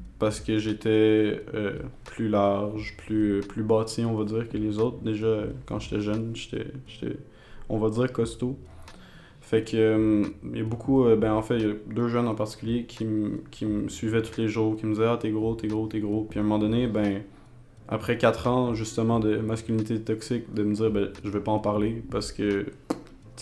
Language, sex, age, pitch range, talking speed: French, male, 20-39, 105-115 Hz, 225 wpm